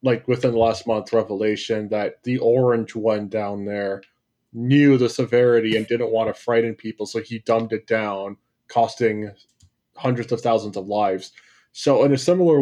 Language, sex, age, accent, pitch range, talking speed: English, male, 20-39, American, 115-140 Hz, 170 wpm